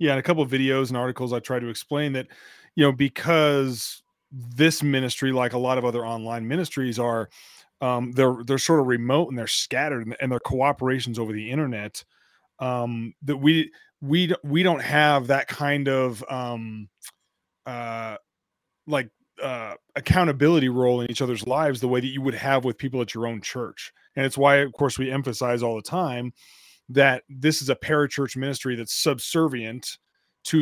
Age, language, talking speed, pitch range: 30-49, English, 180 wpm, 125-145 Hz